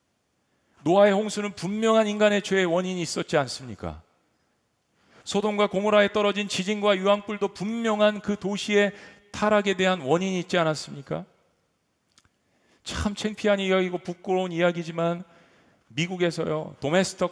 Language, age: Korean, 40-59